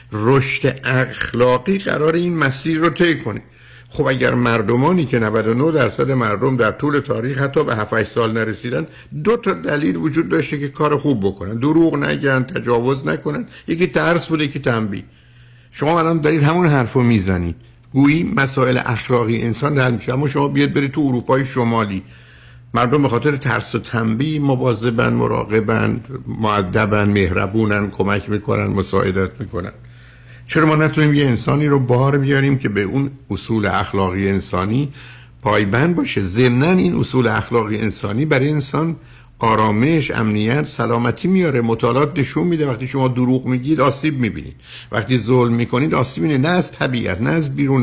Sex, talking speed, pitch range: male, 155 wpm, 115-145 Hz